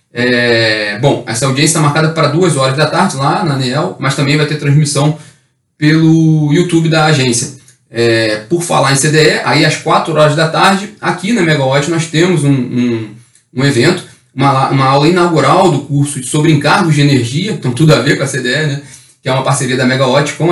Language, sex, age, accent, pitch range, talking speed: Portuguese, male, 20-39, Brazilian, 135-160 Hz, 195 wpm